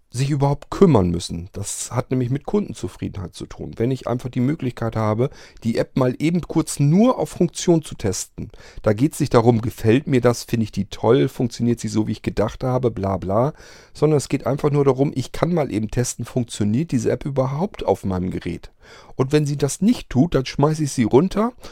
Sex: male